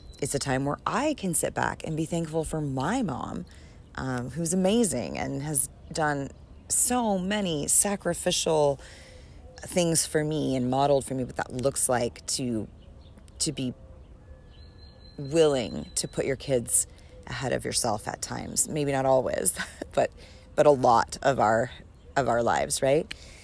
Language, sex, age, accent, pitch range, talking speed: English, female, 30-49, American, 85-145 Hz, 155 wpm